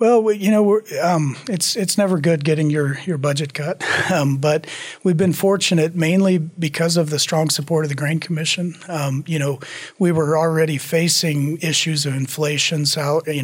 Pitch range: 140-160 Hz